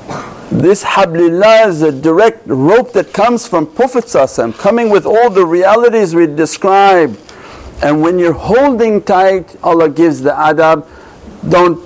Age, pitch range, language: 60-79, 140-185 Hz, English